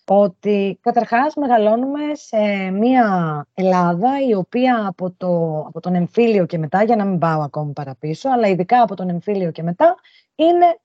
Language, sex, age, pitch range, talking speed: Greek, female, 20-39, 180-250 Hz, 160 wpm